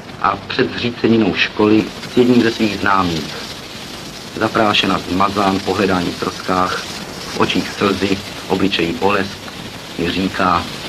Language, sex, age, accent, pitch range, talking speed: Czech, male, 50-69, native, 95-120 Hz, 120 wpm